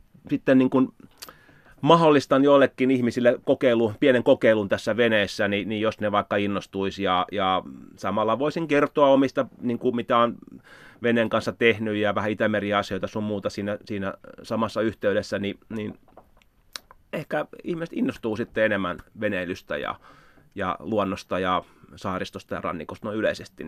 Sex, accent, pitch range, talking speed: male, native, 105-150 Hz, 140 wpm